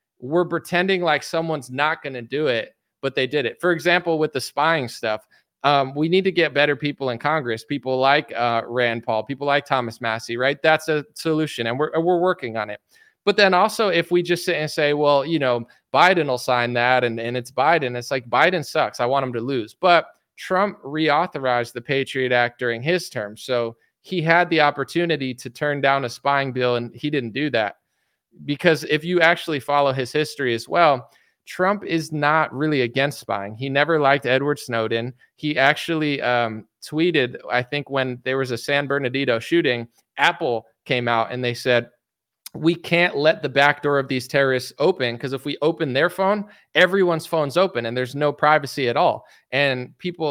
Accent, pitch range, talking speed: American, 125-160 Hz, 200 wpm